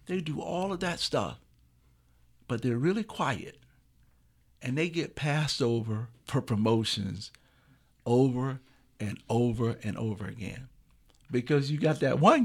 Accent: American